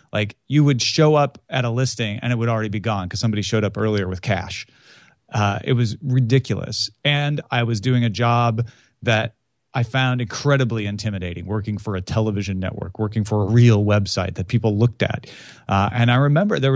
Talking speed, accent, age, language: 195 wpm, American, 30-49, English